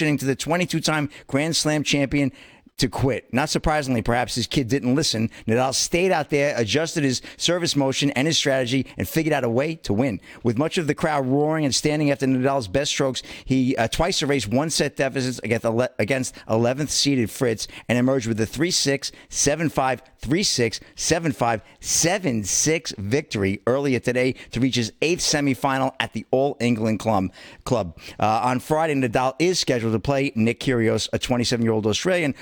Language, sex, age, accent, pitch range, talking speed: English, male, 50-69, American, 115-140 Hz, 185 wpm